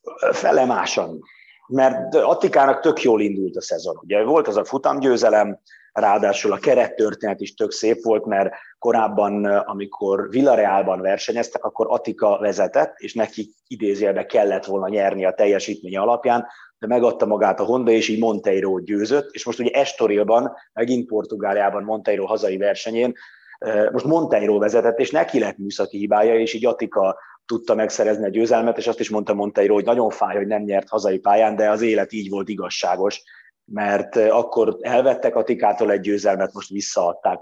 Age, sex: 30-49, male